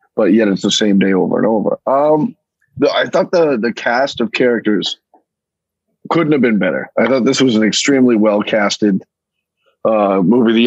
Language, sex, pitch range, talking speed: English, male, 110-140 Hz, 170 wpm